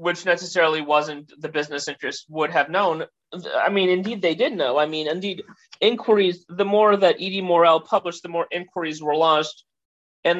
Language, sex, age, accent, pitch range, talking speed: English, male, 30-49, American, 150-180 Hz, 180 wpm